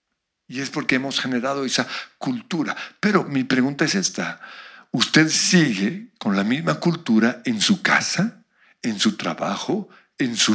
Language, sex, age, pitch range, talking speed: Spanish, male, 60-79, 150-225 Hz, 150 wpm